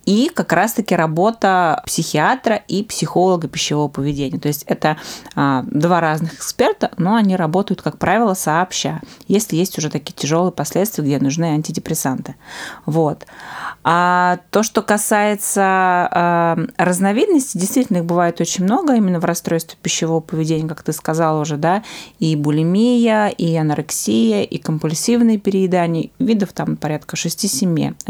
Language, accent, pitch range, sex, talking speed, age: Russian, native, 160-195 Hz, female, 130 wpm, 20-39